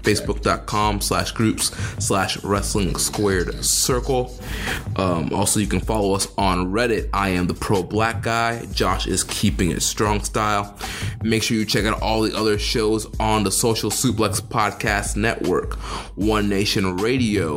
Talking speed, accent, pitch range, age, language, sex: 155 wpm, American, 95-110 Hz, 20-39, English, male